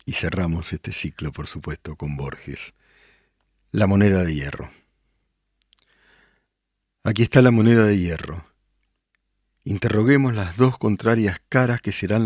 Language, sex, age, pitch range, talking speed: Spanish, male, 50-69, 85-115 Hz, 120 wpm